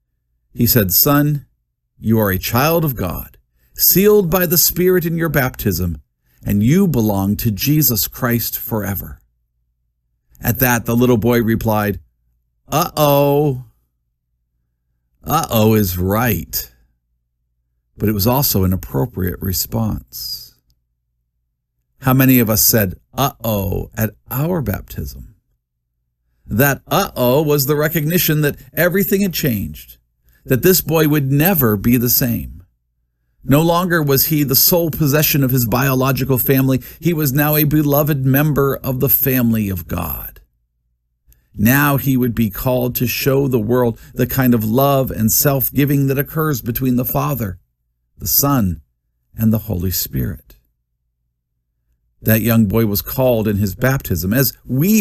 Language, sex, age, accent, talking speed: English, male, 50-69, American, 140 wpm